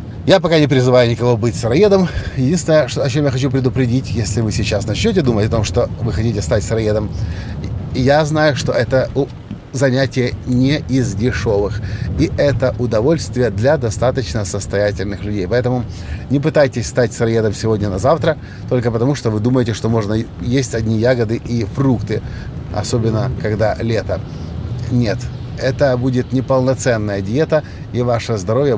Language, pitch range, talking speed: Russian, 105-130 Hz, 150 wpm